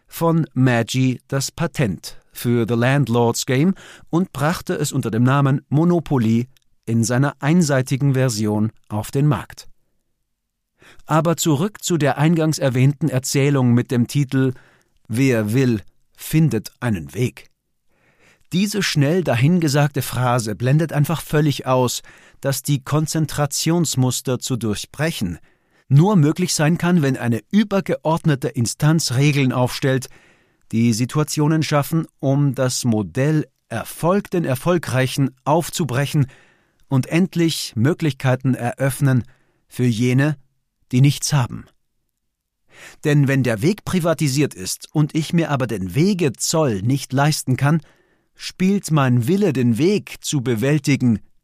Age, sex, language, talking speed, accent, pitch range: 50-69, male, German, 120 wpm, German, 125-155 Hz